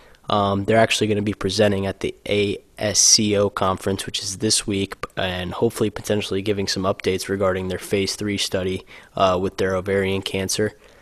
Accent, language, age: American, English, 20-39